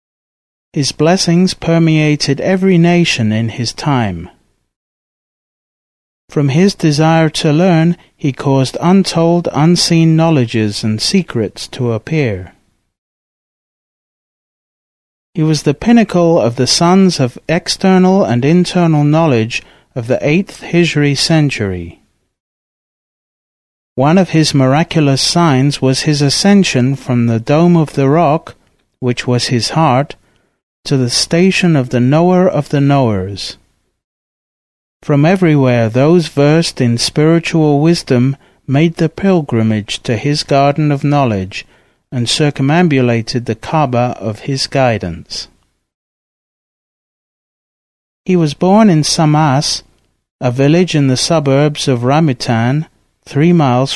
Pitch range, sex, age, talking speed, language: 120-165 Hz, male, 30-49, 115 wpm, English